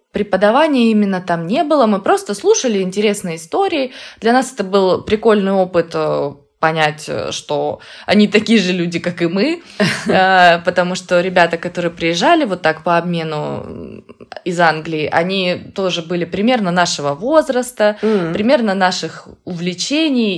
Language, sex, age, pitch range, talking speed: Russian, female, 20-39, 175-230 Hz, 130 wpm